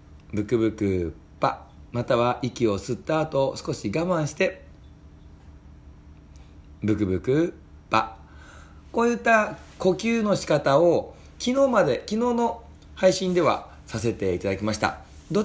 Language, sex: Japanese, male